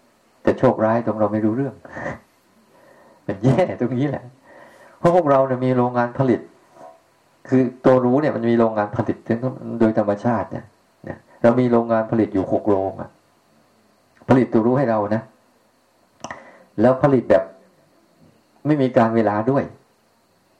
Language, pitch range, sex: Thai, 110-125 Hz, male